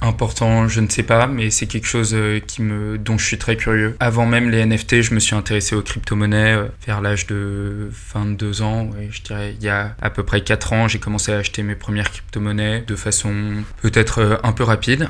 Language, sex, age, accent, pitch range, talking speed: French, male, 20-39, French, 105-110 Hz, 215 wpm